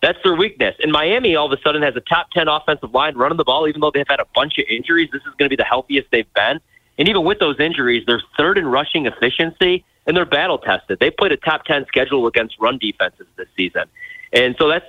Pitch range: 125-180 Hz